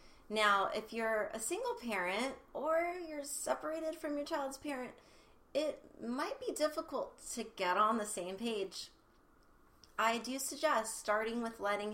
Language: English